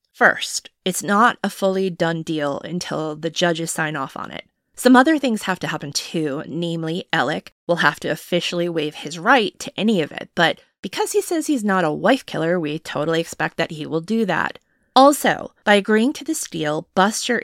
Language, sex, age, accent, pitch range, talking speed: English, female, 20-39, American, 165-220 Hz, 200 wpm